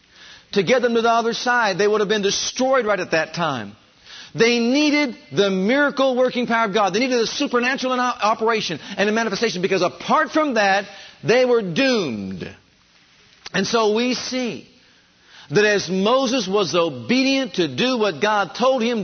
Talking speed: 170 wpm